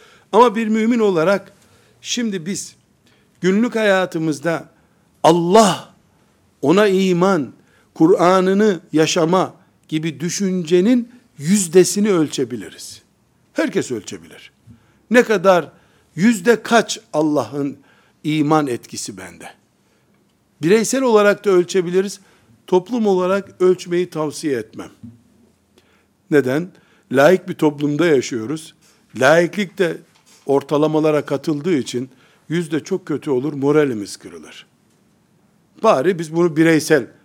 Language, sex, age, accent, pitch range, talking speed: Turkish, male, 60-79, native, 155-200 Hz, 90 wpm